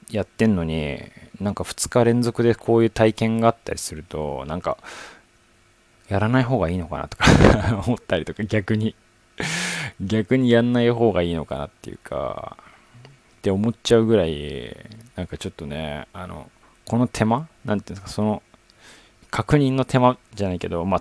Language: Japanese